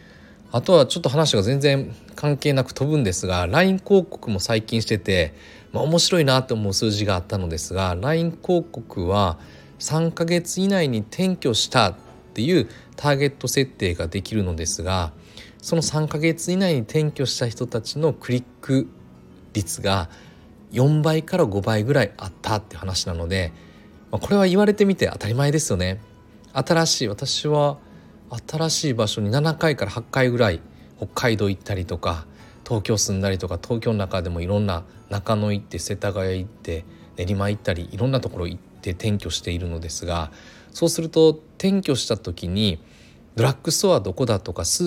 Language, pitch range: Japanese, 95-150 Hz